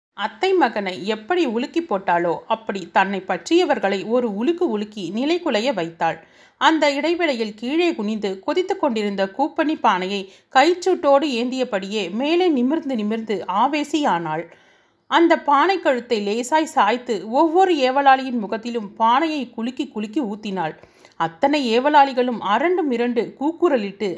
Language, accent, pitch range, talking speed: Tamil, native, 205-300 Hz, 110 wpm